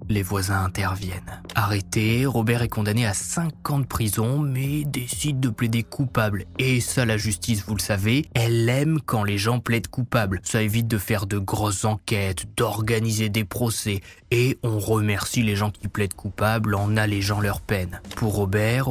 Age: 20-39